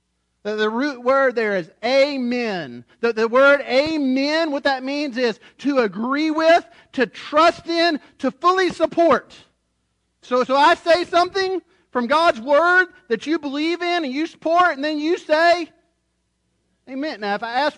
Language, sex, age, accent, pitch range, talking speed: English, male, 40-59, American, 210-315 Hz, 160 wpm